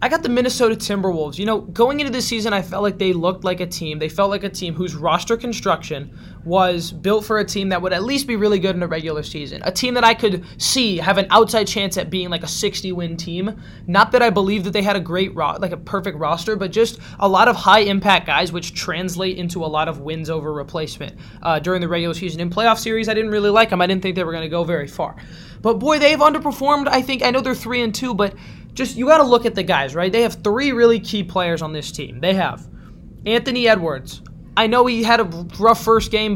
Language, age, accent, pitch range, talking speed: English, 20-39, American, 170-225 Hz, 255 wpm